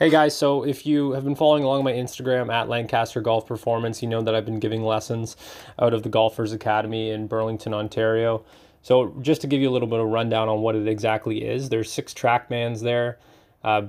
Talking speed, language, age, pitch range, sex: 225 wpm, English, 20-39, 110-120 Hz, male